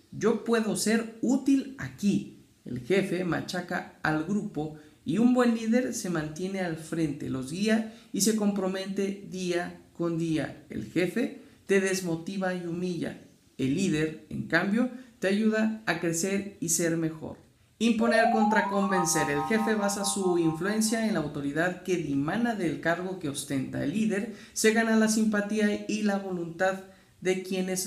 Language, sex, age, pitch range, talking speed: Spanish, male, 50-69, 165-210 Hz, 155 wpm